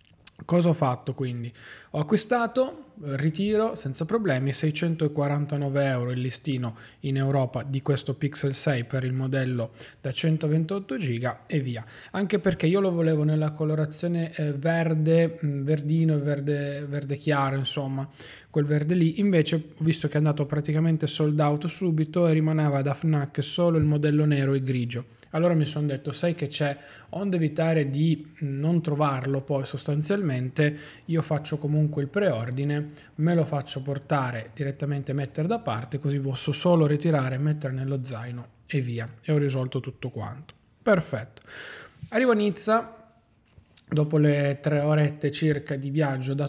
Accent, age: native, 20-39